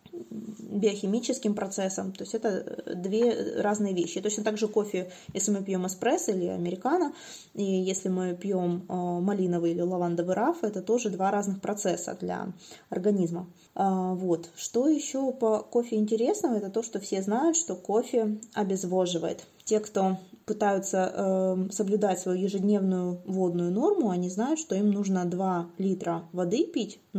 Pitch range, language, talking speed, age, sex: 180-215 Hz, Russian, 145 wpm, 20-39, female